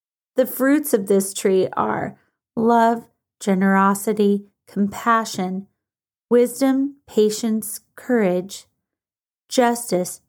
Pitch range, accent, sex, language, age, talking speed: 195-250 Hz, American, female, English, 30-49, 75 wpm